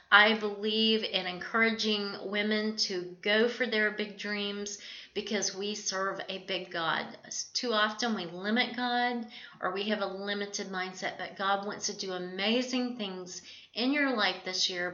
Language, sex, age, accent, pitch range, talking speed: English, female, 40-59, American, 190-220 Hz, 160 wpm